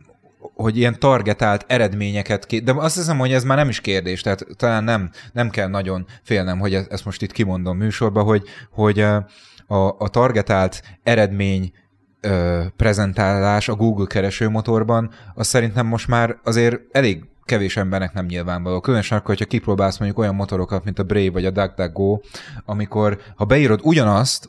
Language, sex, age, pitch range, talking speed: Hungarian, male, 30-49, 100-115 Hz, 155 wpm